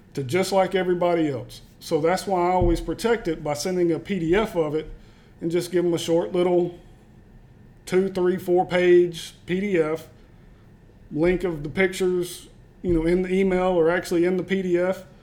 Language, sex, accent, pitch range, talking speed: English, male, American, 160-180 Hz, 175 wpm